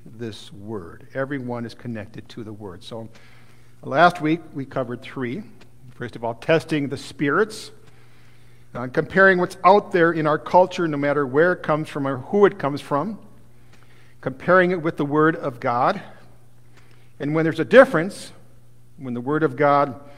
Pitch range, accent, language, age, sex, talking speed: 120-150 Hz, American, English, 50-69, male, 165 wpm